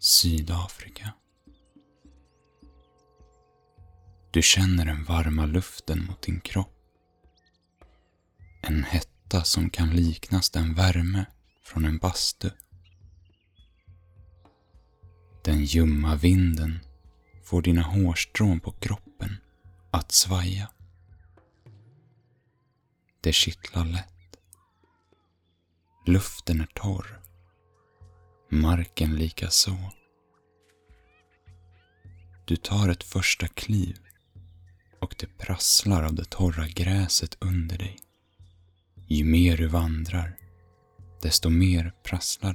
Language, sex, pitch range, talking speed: Swedish, male, 85-95 Hz, 85 wpm